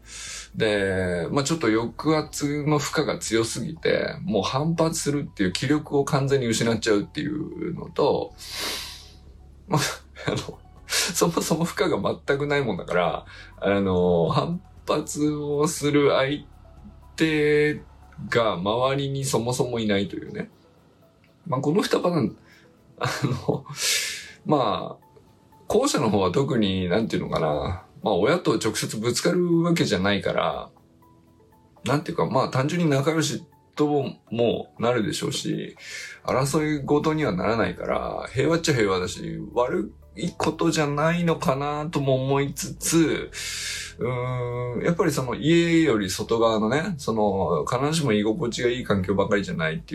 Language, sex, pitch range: Japanese, male, 105-150 Hz